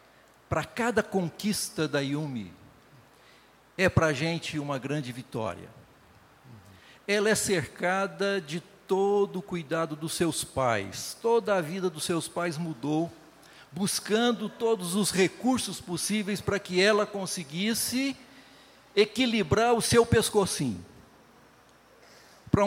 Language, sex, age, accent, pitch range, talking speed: Portuguese, male, 60-79, Brazilian, 160-210 Hz, 115 wpm